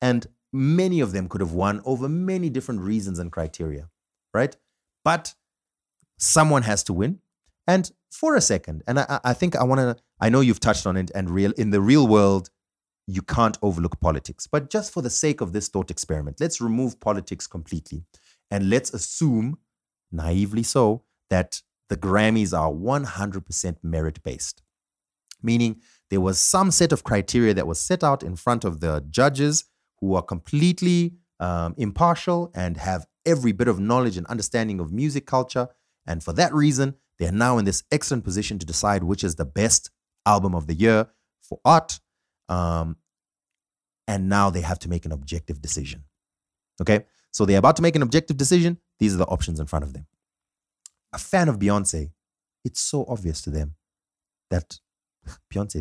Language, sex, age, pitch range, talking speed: English, male, 30-49, 85-130 Hz, 175 wpm